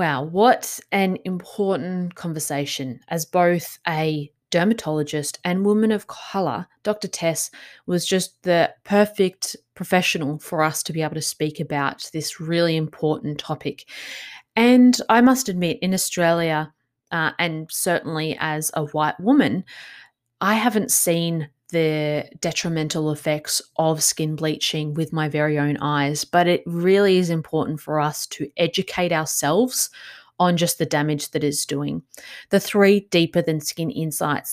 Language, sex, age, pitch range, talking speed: English, female, 20-39, 150-185 Hz, 140 wpm